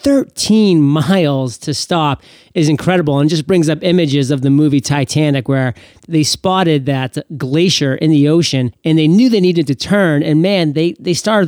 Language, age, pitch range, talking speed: English, 30-49, 140-180 Hz, 185 wpm